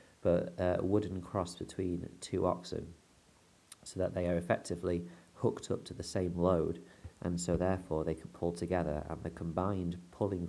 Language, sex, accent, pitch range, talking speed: English, male, British, 80-90 Hz, 165 wpm